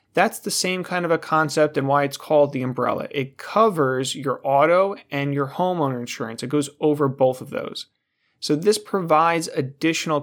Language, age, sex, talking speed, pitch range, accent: English, 30-49, male, 180 wpm, 135-160 Hz, American